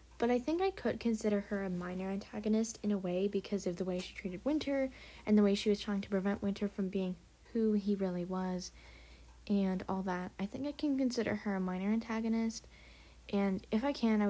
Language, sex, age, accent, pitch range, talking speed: English, female, 10-29, American, 185-225 Hz, 220 wpm